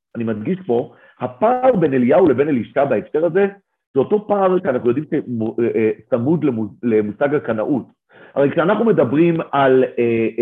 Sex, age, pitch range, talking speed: male, 50-69, 145-195 Hz, 130 wpm